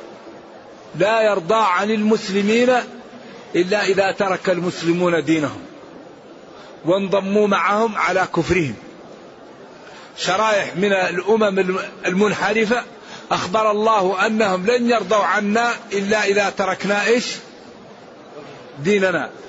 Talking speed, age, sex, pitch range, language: 85 wpm, 50-69, male, 185-215 Hz, Arabic